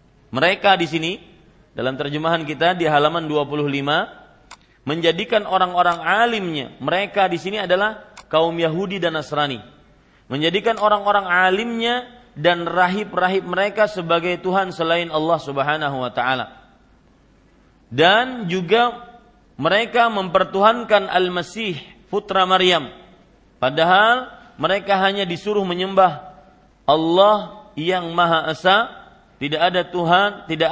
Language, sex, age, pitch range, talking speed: Malay, male, 40-59, 160-195 Hz, 105 wpm